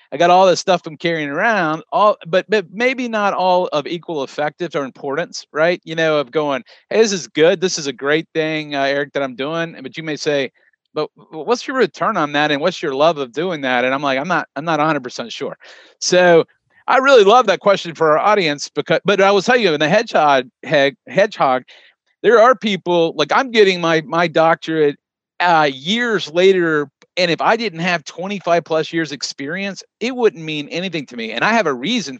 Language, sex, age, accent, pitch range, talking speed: English, male, 40-59, American, 150-200 Hz, 215 wpm